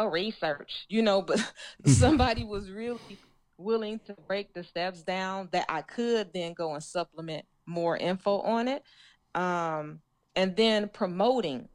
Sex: female